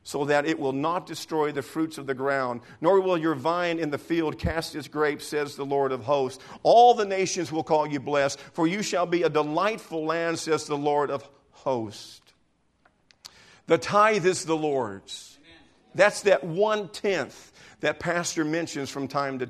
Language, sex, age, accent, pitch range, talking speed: English, male, 50-69, American, 145-190 Hz, 180 wpm